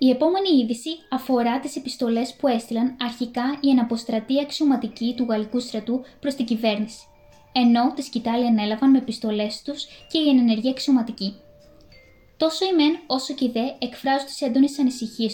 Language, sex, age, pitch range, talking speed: Greek, female, 20-39, 235-280 Hz, 155 wpm